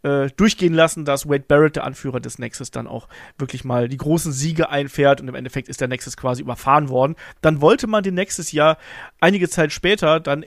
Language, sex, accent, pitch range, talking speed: German, male, German, 140-175 Hz, 205 wpm